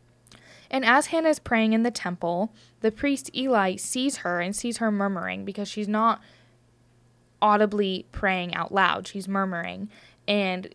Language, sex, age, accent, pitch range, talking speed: English, female, 10-29, American, 190-240 Hz, 150 wpm